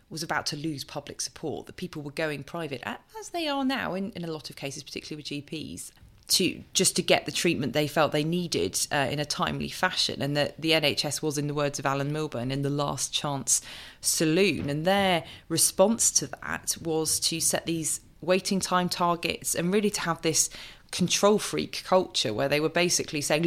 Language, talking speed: English, 205 wpm